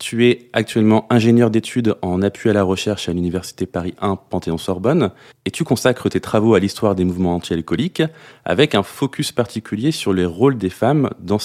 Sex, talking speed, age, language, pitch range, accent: male, 185 wpm, 30-49, French, 90-120 Hz, French